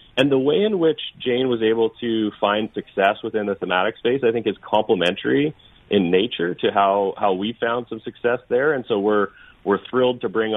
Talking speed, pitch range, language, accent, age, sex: 205 wpm, 90-110 Hz, English, American, 30-49, male